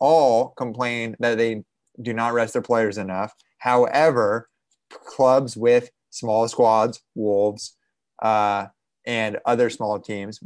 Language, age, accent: English, 20-39, American